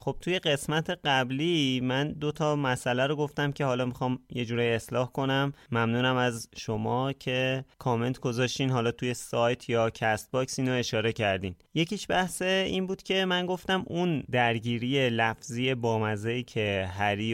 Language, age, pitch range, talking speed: Persian, 30-49, 110-140 Hz, 155 wpm